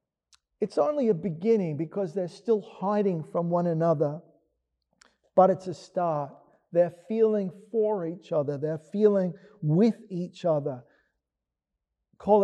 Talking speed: 125 wpm